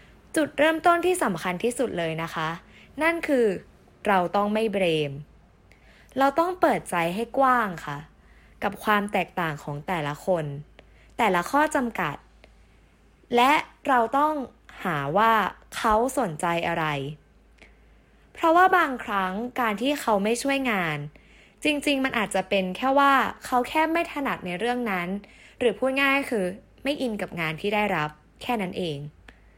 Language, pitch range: English, 185-275 Hz